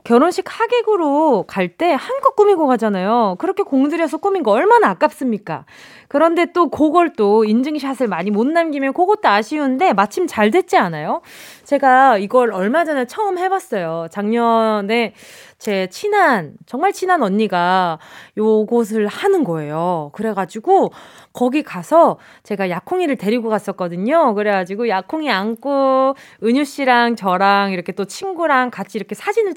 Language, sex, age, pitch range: Korean, female, 20-39, 210-310 Hz